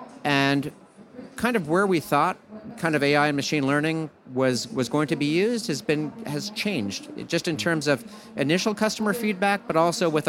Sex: male